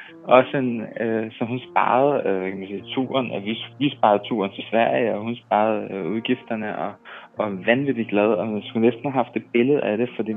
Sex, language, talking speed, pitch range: male, Danish, 215 wpm, 105-125 Hz